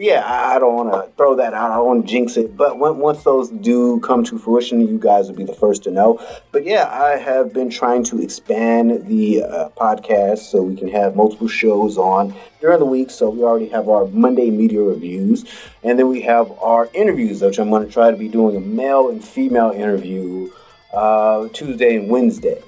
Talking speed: 215 wpm